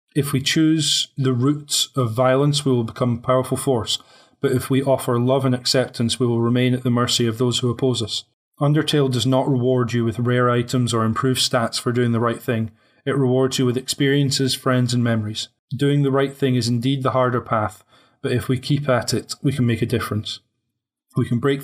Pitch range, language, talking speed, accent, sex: 120-135 Hz, English, 215 wpm, British, male